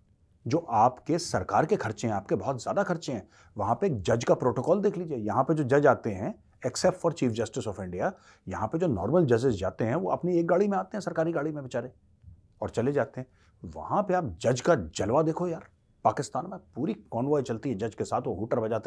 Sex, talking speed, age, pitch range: male, 180 wpm, 30-49, 105-155 Hz